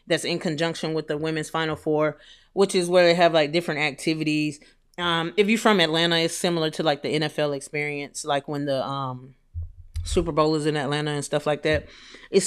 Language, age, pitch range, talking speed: English, 30-49, 145-180 Hz, 200 wpm